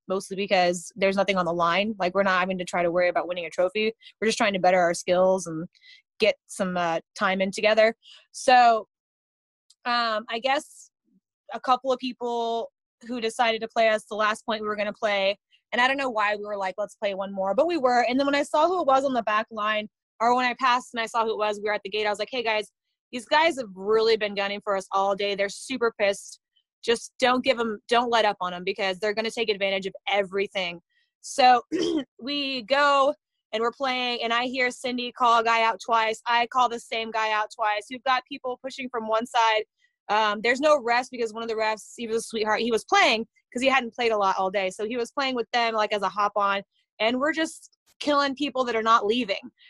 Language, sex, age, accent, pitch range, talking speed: English, female, 20-39, American, 205-255 Hz, 245 wpm